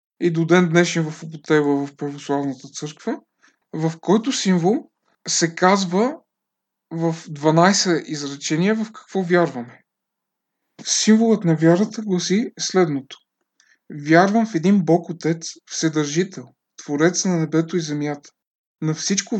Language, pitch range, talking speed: Bulgarian, 155-190 Hz, 120 wpm